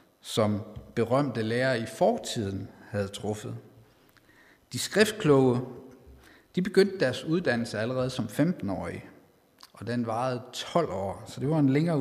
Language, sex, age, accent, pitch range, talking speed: Danish, male, 50-69, native, 110-140 Hz, 130 wpm